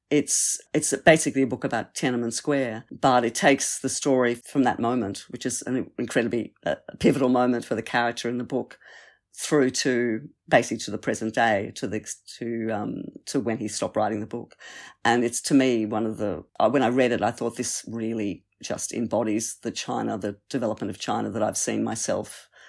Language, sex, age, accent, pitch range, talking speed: English, female, 50-69, Australian, 120-135 Hz, 195 wpm